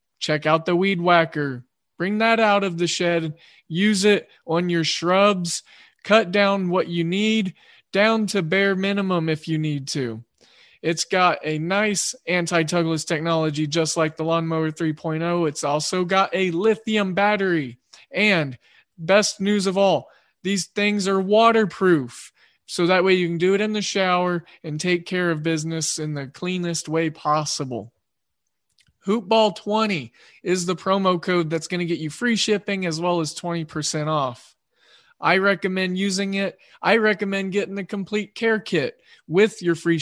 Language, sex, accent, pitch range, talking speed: English, male, American, 160-200 Hz, 160 wpm